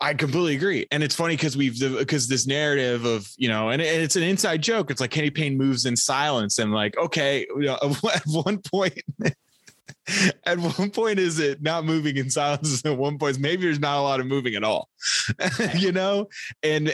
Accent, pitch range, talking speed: American, 115-150 Hz, 210 wpm